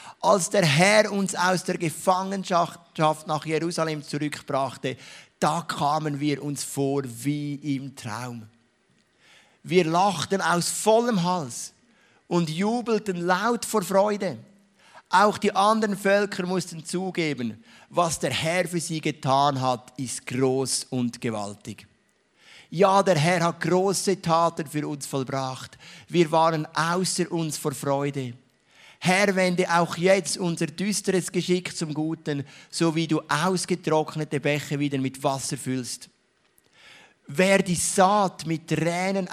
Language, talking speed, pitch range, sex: English, 125 wpm, 135-180 Hz, male